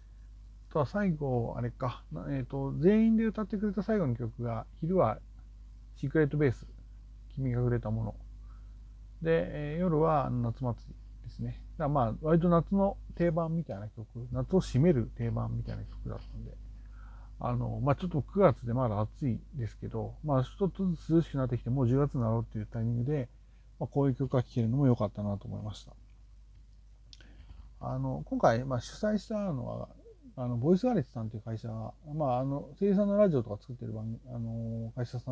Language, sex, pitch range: Japanese, male, 110-165 Hz